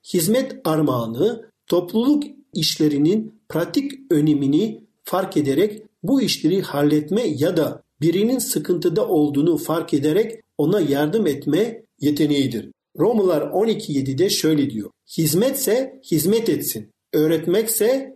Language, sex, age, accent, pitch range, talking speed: Turkish, male, 50-69, native, 145-215 Hz, 100 wpm